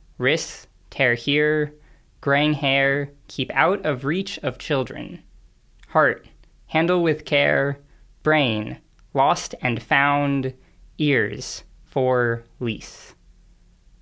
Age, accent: 10-29, American